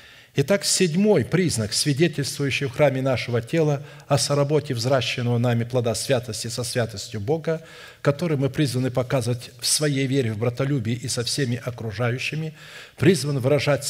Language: Russian